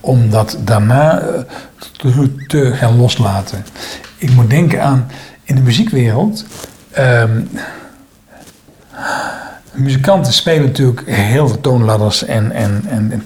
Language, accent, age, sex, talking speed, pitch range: Dutch, Dutch, 60-79, male, 120 wpm, 120-155 Hz